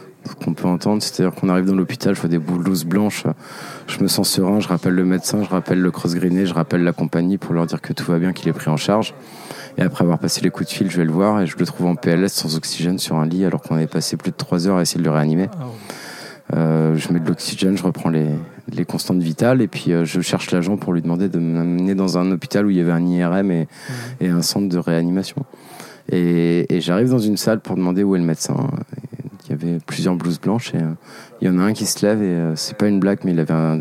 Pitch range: 85-95 Hz